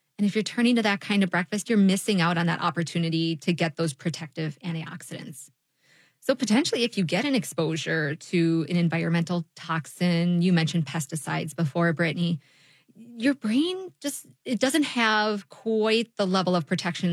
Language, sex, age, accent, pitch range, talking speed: English, female, 20-39, American, 170-210 Hz, 165 wpm